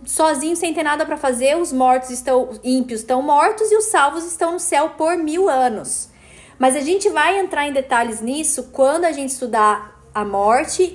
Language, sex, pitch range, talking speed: Portuguese, female, 245-320 Hz, 190 wpm